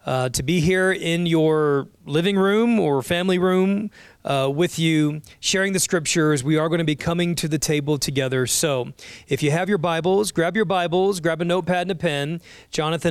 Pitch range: 145-175 Hz